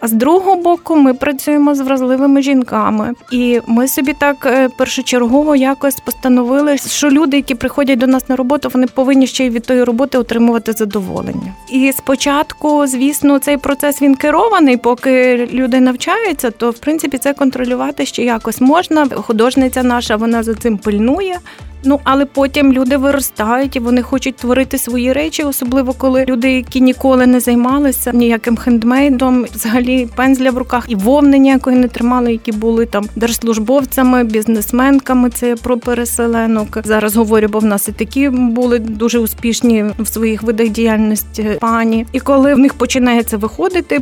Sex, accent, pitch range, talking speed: female, native, 230-275 Hz, 160 wpm